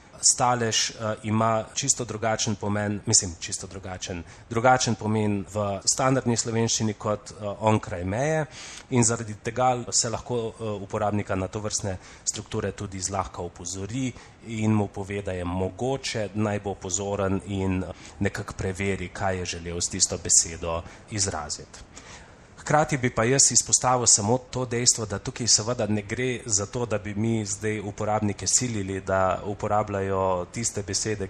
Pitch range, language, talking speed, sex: 95-115 Hz, Italian, 140 wpm, male